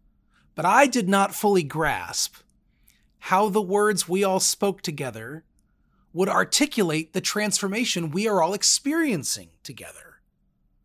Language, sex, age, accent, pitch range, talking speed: English, male, 40-59, American, 140-200 Hz, 120 wpm